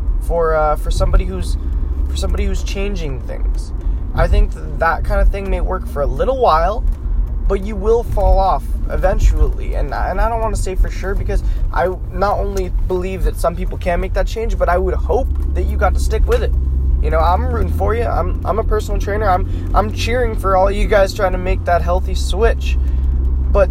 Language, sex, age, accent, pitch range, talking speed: English, male, 20-39, American, 70-85 Hz, 220 wpm